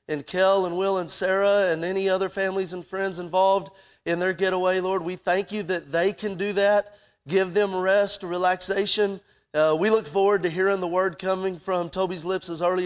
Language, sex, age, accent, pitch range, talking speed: English, male, 30-49, American, 180-210 Hz, 200 wpm